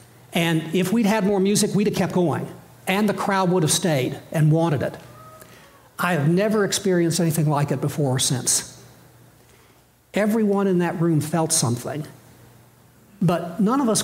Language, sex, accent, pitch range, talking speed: English, male, American, 145-190 Hz, 165 wpm